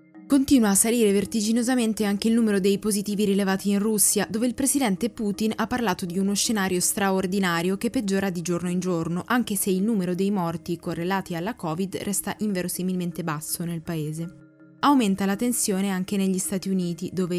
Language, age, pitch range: Italian, 20-39, 175-210 Hz